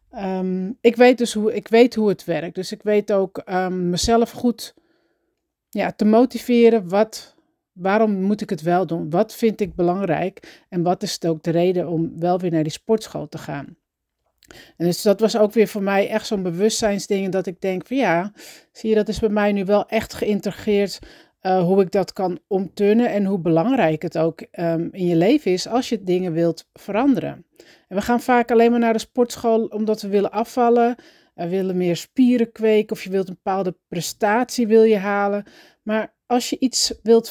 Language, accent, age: Dutch, Dutch, 40-59